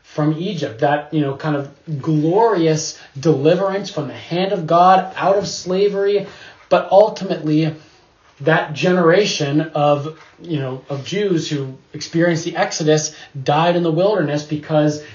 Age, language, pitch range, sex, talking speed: 20-39, English, 150-175 Hz, male, 140 wpm